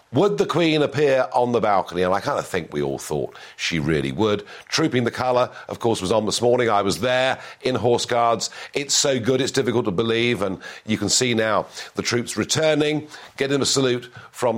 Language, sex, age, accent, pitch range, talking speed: English, male, 50-69, British, 105-135 Hz, 215 wpm